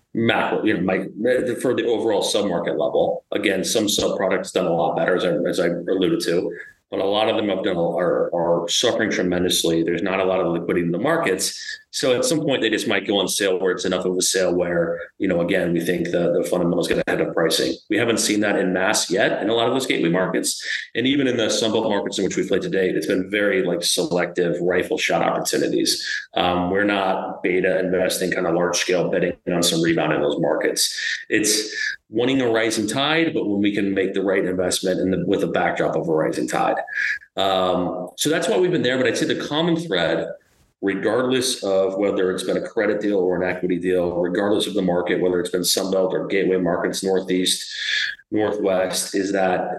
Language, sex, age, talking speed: English, male, 30-49, 220 wpm